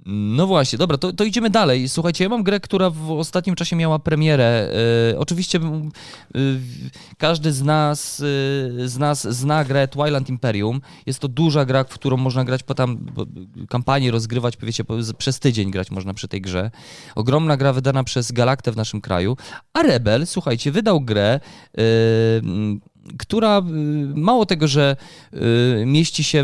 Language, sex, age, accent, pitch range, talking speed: Polish, male, 20-39, native, 115-155 Hz, 150 wpm